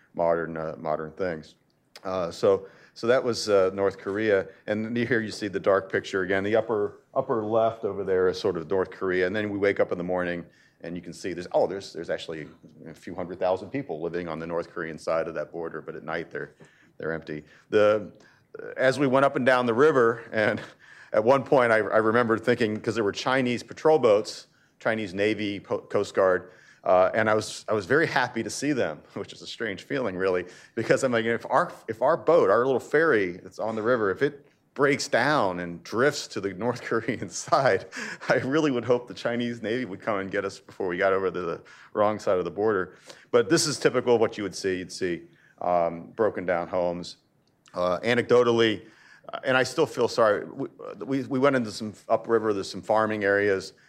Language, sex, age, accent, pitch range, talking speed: English, male, 40-59, American, 90-125 Hz, 215 wpm